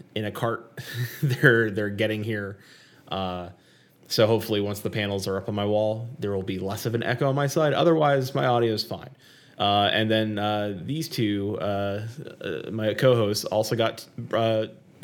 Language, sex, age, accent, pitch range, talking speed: English, male, 20-39, American, 105-145 Hz, 185 wpm